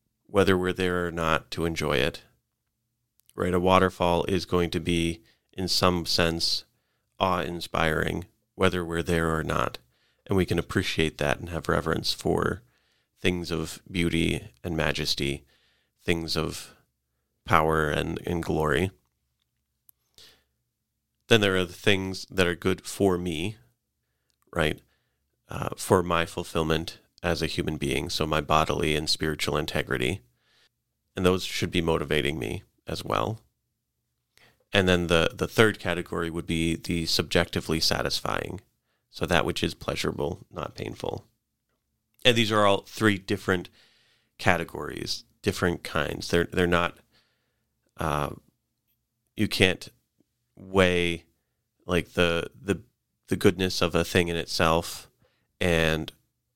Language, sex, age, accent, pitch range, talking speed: English, male, 30-49, American, 80-95 Hz, 130 wpm